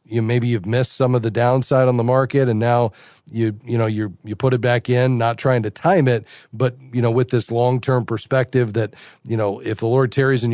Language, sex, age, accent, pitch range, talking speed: English, male, 40-59, American, 115-130 Hz, 245 wpm